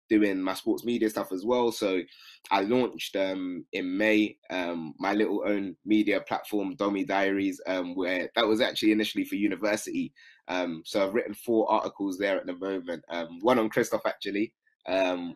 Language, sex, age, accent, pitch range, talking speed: English, male, 20-39, British, 90-110 Hz, 175 wpm